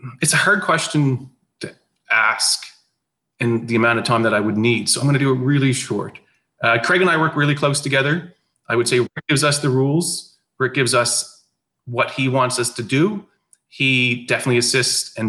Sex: male